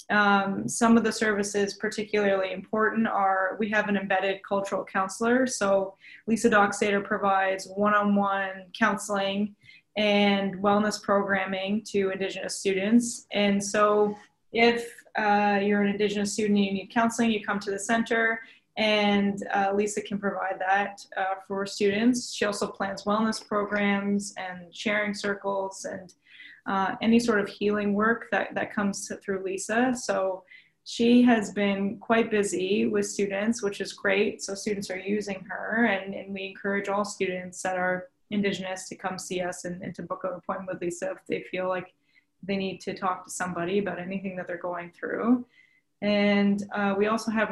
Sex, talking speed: female, 165 wpm